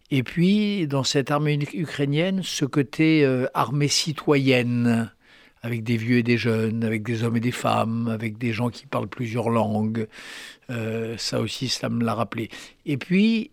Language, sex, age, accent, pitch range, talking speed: French, male, 60-79, French, 115-145 Hz, 175 wpm